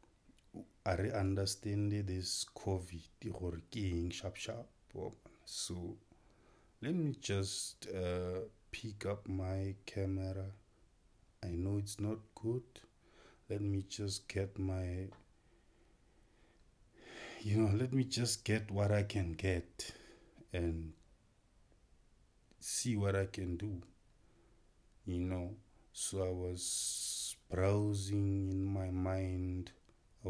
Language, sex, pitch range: English, male, 90-105 Hz